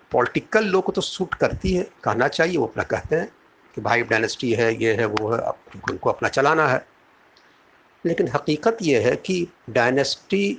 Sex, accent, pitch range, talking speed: male, native, 120-170 Hz, 170 wpm